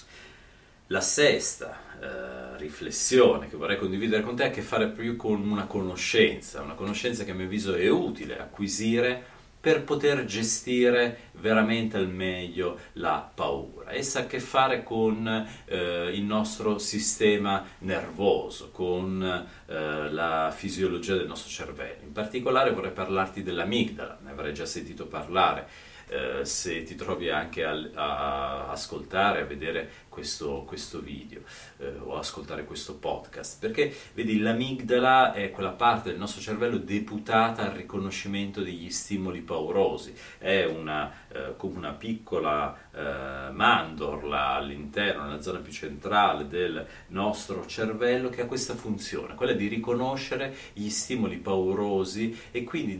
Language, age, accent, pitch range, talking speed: Italian, 40-59, native, 95-120 Hz, 140 wpm